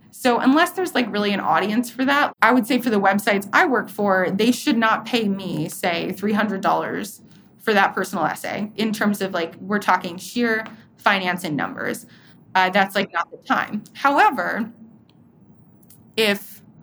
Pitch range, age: 195-240 Hz, 20-39